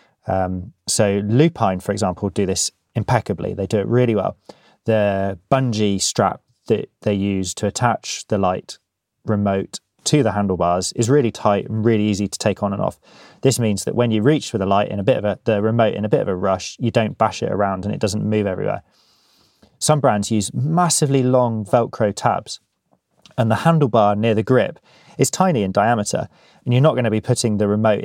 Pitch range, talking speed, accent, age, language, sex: 100-120 Hz, 205 wpm, British, 20-39, English, male